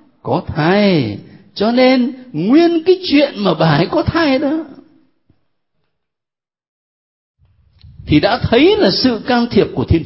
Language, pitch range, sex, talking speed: Vietnamese, 155-260 Hz, male, 130 wpm